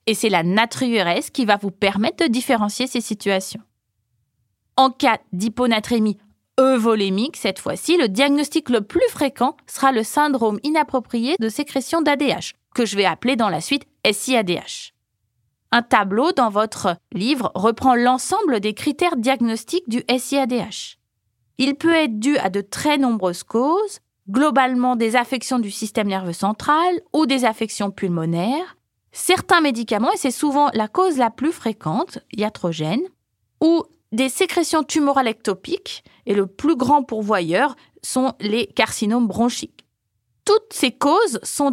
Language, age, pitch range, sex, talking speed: French, 20-39, 215-285 Hz, female, 140 wpm